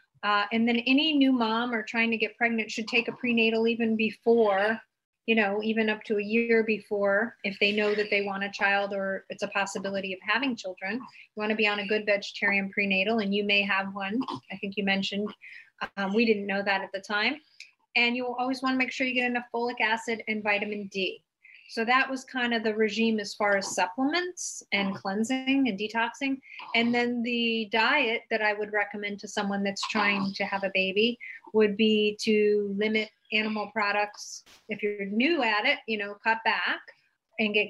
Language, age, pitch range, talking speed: English, 30-49, 200-230 Hz, 205 wpm